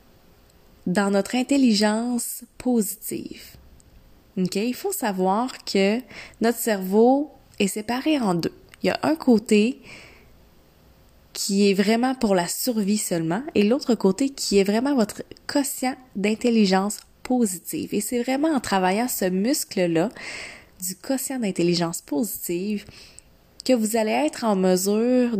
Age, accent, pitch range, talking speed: 20-39, Canadian, 175-235 Hz, 125 wpm